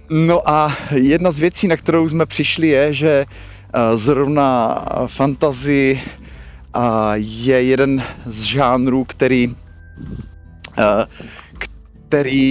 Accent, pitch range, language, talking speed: native, 115-140 Hz, Czech, 90 wpm